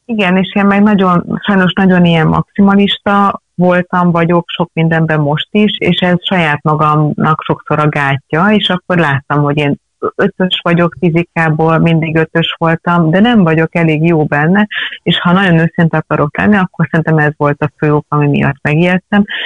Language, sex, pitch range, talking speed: Hungarian, female, 140-175 Hz, 165 wpm